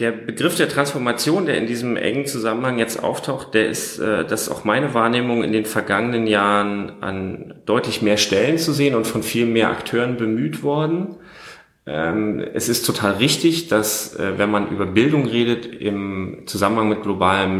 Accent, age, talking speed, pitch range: German, 30-49, 165 wpm, 105-120 Hz